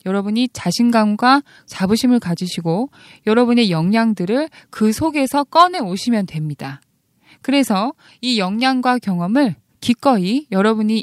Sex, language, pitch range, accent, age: female, Korean, 180-250 Hz, native, 20-39